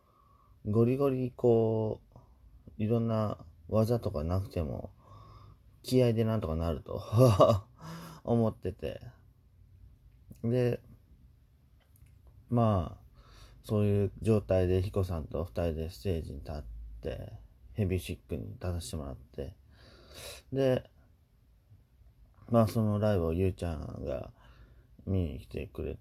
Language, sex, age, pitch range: Japanese, male, 30-49, 85-110 Hz